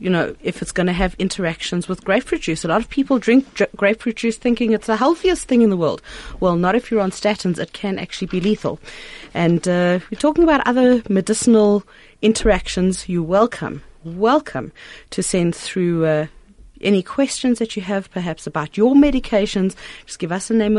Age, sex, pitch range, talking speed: 30-49, female, 170-225 Hz, 190 wpm